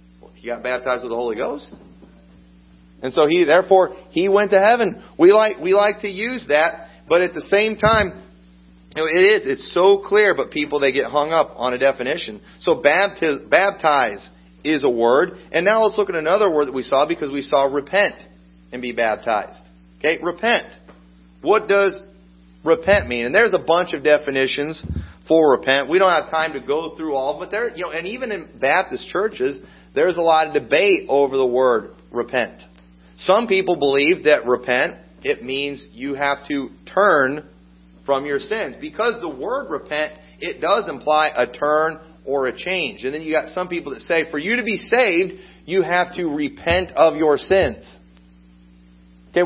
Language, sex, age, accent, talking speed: English, male, 40-59, American, 185 wpm